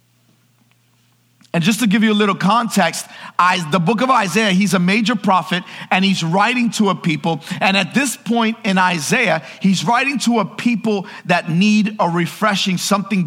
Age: 50-69